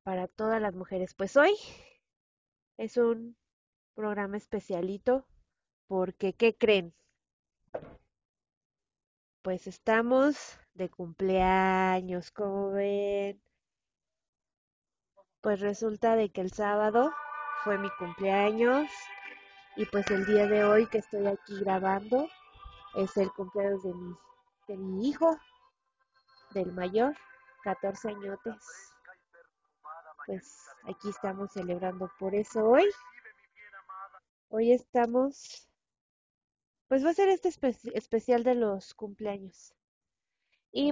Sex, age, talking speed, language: female, 20-39, 100 wpm, Spanish